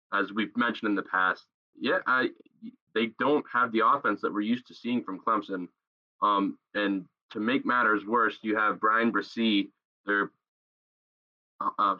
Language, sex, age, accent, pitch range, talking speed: English, male, 20-39, American, 100-130 Hz, 165 wpm